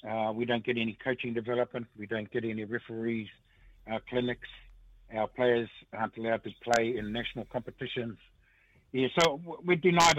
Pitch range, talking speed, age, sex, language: 115-145 Hz, 165 wpm, 60-79, male, English